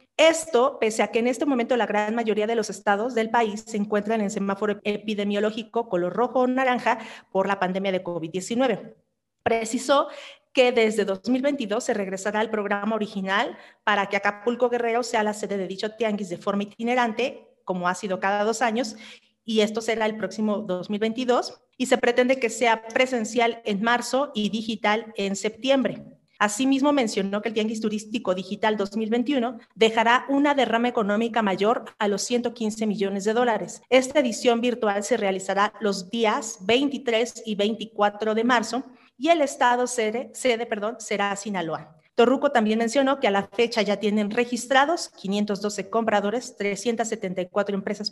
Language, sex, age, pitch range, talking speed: Spanish, female, 40-59, 210-245 Hz, 160 wpm